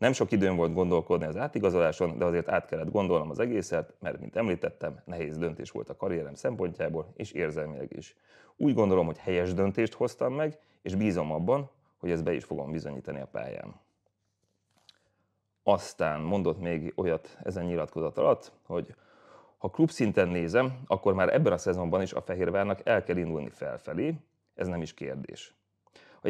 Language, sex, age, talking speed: Hungarian, male, 30-49, 165 wpm